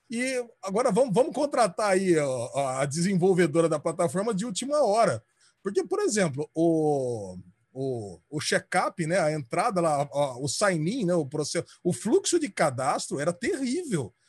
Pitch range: 155-225 Hz